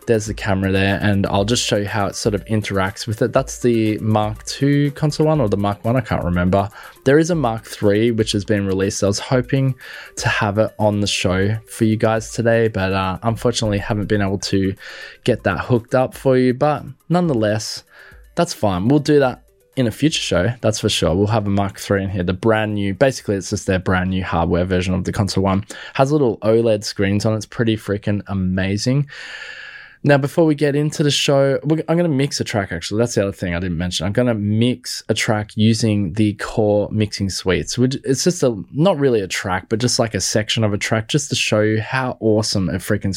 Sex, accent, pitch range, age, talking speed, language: male, Australian, 100-130 Hz, 20-39, 230 wpm, English